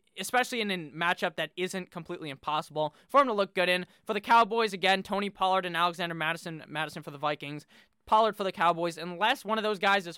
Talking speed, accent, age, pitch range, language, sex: 220 wpm, American, 20-39, 170-230 Hz, English, male